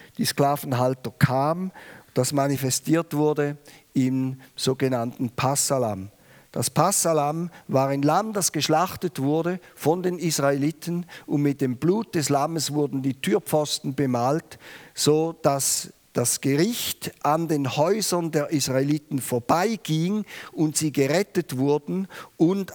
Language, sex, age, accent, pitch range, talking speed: German, male, 50-69, German, 140-165 Hz, 120 wpm